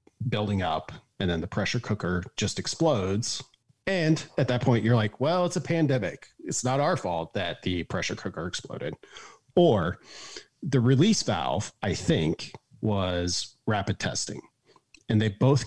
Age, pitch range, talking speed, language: 40-59, 95-130 Hz, 155 wpm, English